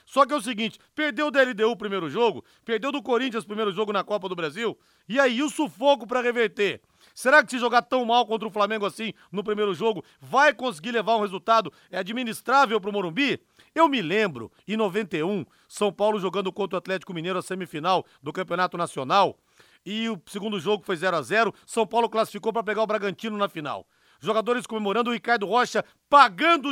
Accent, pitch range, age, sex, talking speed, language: Brazilian, 210-255 Hz, 40-59, male, 200 wpm, Portuguese